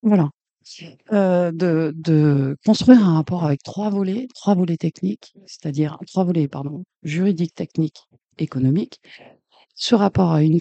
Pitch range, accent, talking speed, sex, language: 160-220 Hz, French, 135 wpm, female, French